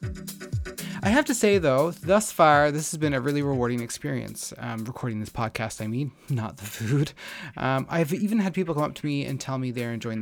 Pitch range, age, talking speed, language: 130-170 Hz, 30-49, 215 wpm, English